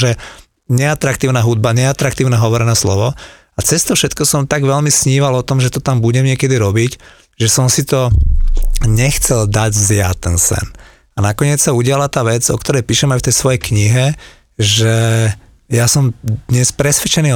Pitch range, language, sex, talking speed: 110-135 Hz, Slovak, male, 175 wpm